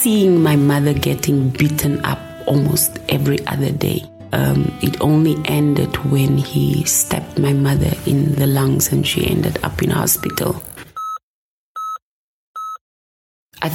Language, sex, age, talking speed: English, female, 30-49, 125 wpm